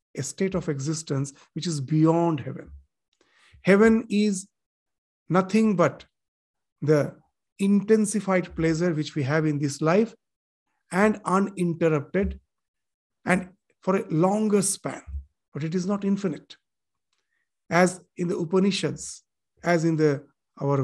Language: English